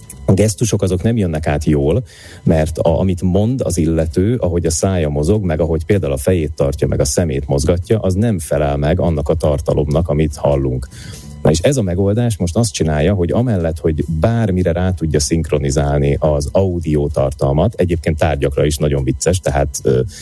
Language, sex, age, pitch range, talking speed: Hungarian, male, 30-49, 75-95 Hz, 175 wpm